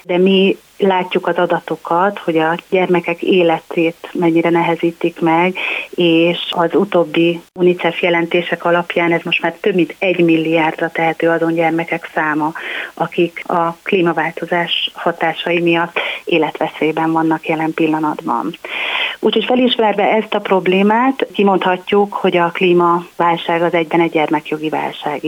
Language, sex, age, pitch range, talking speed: Hungarian, female, 30-49, 165-185 Hz, 125 wpm